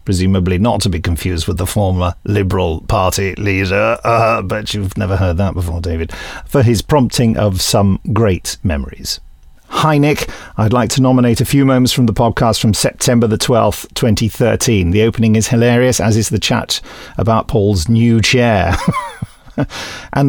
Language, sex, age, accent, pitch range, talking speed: English, male, 50-69, British, 95-130 Hz, 165 wpm